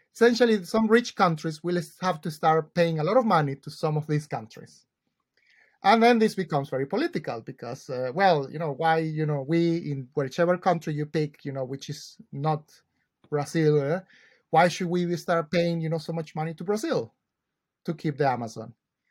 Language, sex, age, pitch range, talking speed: English, male, 30-49, 150-190 Hz, 190 wpm